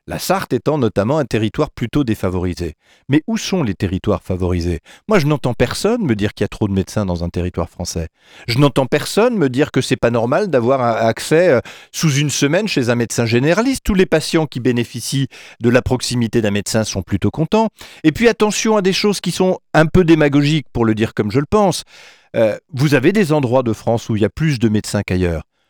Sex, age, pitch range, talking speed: male, 40-59, 115-155 Hz, 225 wpm